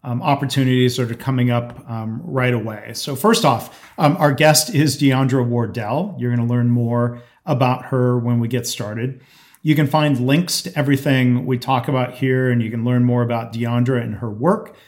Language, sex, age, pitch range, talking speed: English, male, 40-59, 120-145 Hz, 200 wpm